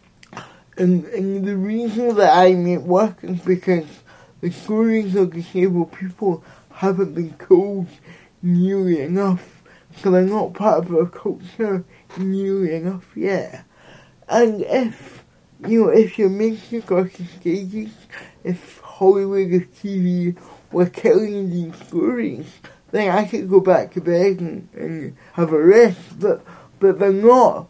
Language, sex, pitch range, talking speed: English, male, 175-200 Hz, 140 wpm